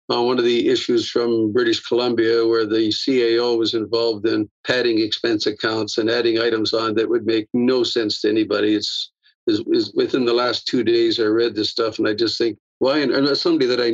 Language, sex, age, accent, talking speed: English, male, 50-69, American, 205 wpm